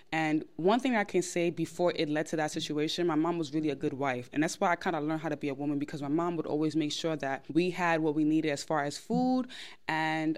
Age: 20-39